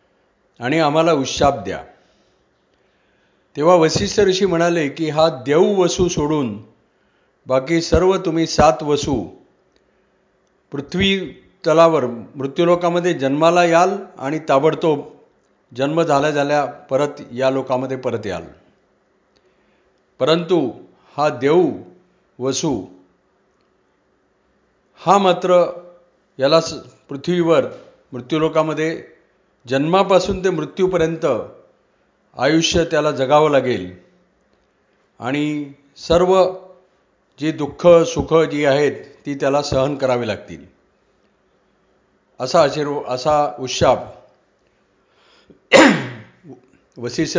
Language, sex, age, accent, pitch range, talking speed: Marathi, male, 50-69, native, 140-175 Hz, 70 wpm